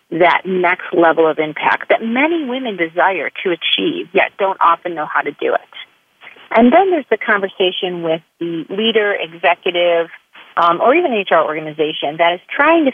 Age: 40-59